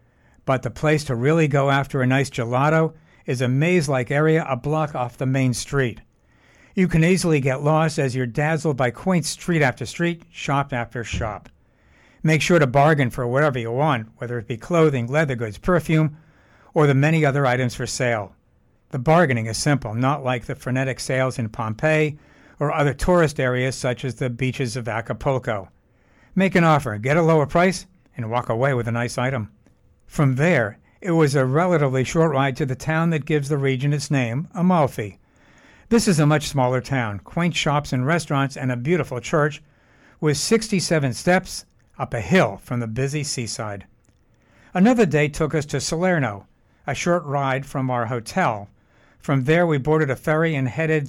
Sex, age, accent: male, 60-79, American